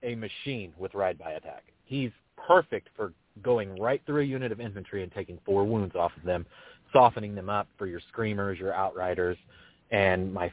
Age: 30-49